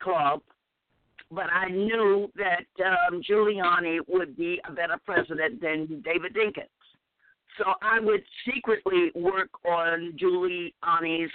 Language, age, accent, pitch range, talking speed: English, 50-69, American, 165-195 Hz, 115 wpm